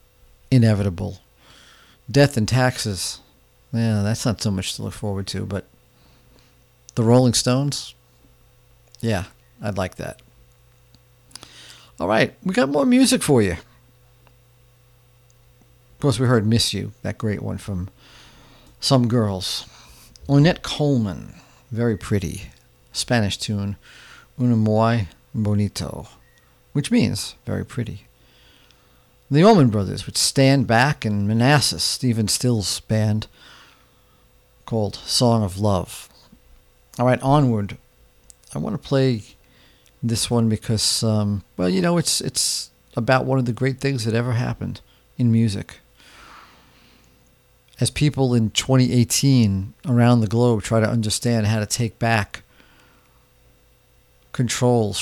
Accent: American